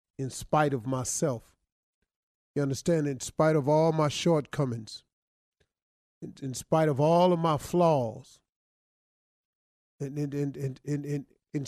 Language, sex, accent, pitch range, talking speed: English, male, American, 135-175 Hz, 140 wpm